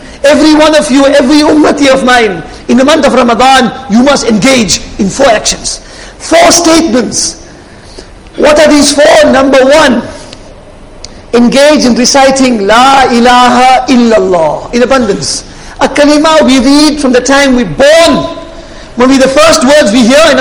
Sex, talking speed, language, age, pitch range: male, 155 wpm, English, 50-69, 245-295 Hz